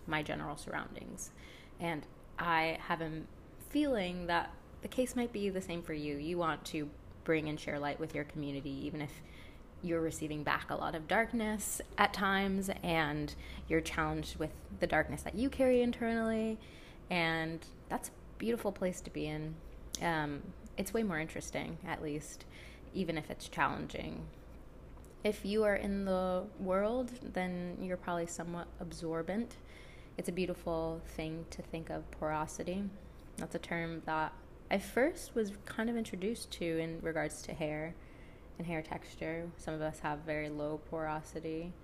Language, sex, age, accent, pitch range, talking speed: English, female, 20-39, American, 155-195 Hz, 160 wpm